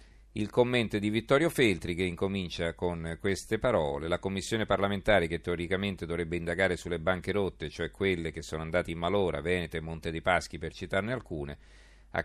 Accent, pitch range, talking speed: native, 85-100 Hz, 175 wpm